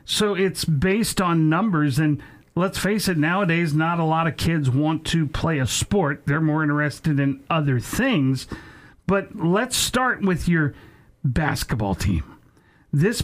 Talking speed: 155 wpm